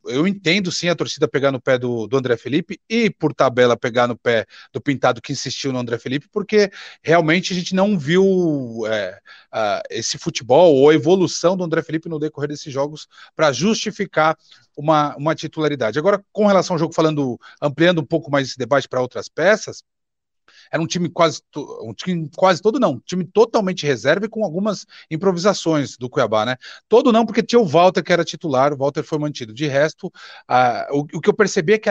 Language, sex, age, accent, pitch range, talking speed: Portuguese, male, 40-59, Brazilian, 140-185 Hz, 205 wpm